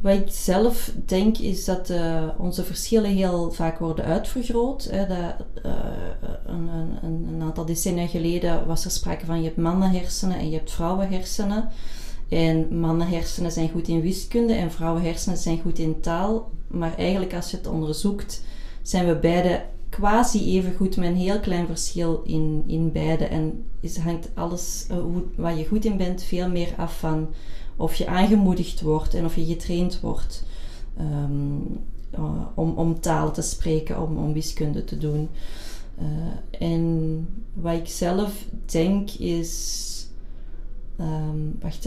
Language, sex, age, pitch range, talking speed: Dutch, female, 20-39, 160-185 Hz, 155 wpm